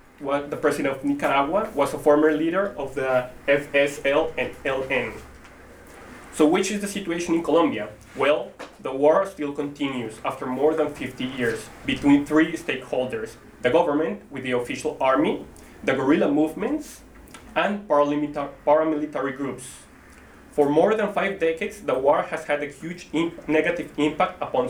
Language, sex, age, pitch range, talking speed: English, male, 20-39, 135-160 Hz, 145 wpm